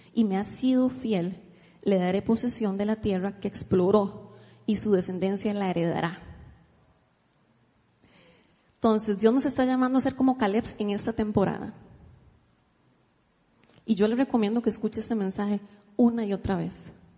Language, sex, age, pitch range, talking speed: Spanish, female, 30-49, 195-230 Hz, 145 wpm